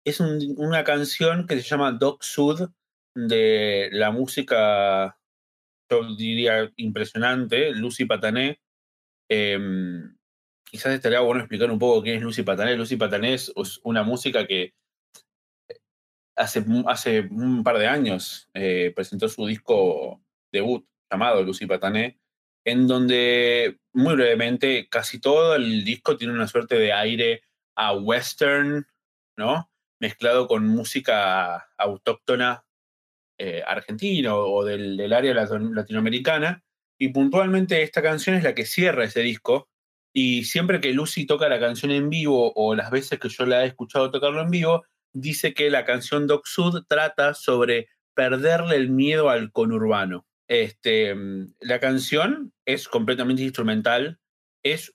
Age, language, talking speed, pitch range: 30-49, Spanish, 135 wpm, 110-165 Hz